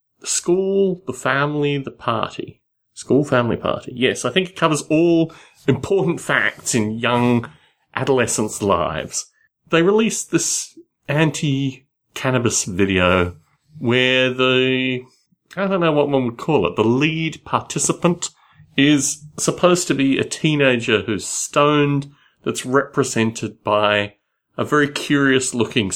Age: 30-49